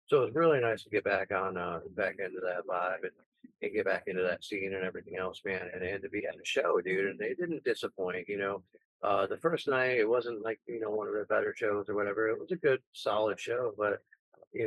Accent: American